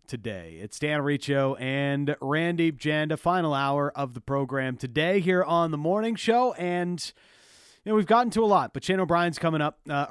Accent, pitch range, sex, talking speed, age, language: American, 115-150 Hz, male, 190 wpm, 40-59, English